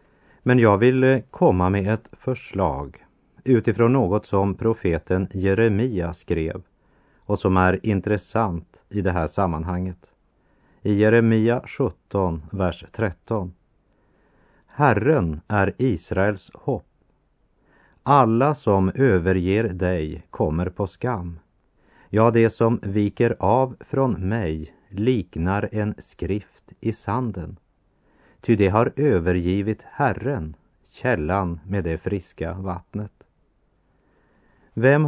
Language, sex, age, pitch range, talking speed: Swedish, male, 40-59, 90-115 Hz, 105 wpm